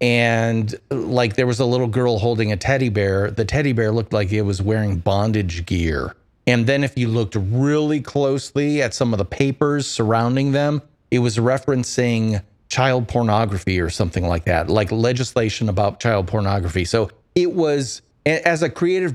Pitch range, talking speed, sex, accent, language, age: 105-135 Hz, 170 wpm, male, American, English, 40-59